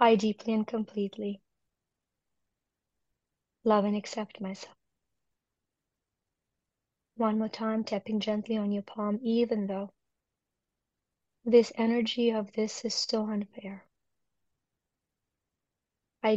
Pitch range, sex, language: 215-245 Hz, female, English